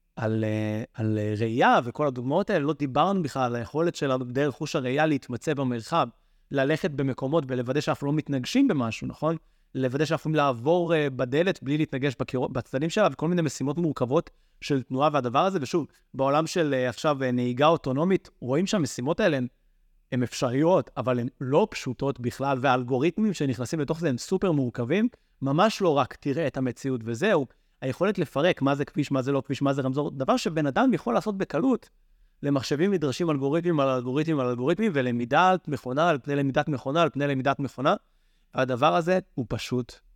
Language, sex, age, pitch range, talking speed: Hebrew, male, 30-49, 125-155 Hz, 155 wpm